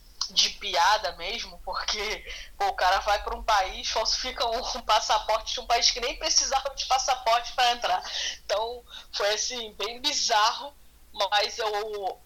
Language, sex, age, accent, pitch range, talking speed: Portuguese, female, 10-29, Brazilian, 185-240 Hz, 145 wpm